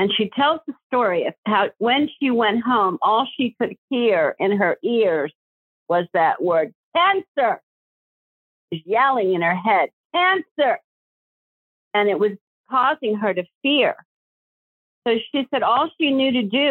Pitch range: 200-265 Hz